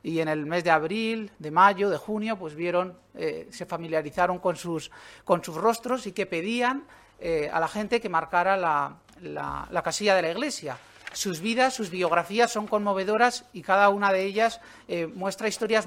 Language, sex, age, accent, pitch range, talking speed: Spanish, male, 40-59, Spanish, 170-220 Hz, 190 wpm